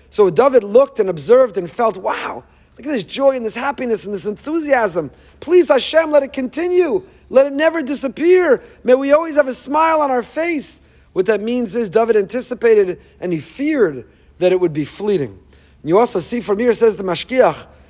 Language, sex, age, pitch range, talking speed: English, male, 40-59, 190-270 Hz, 195 wpm